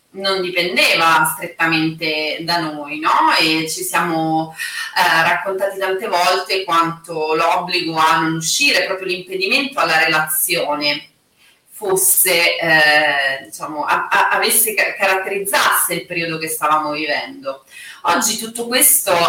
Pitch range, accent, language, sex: 160-195 Hz, native, Italian, female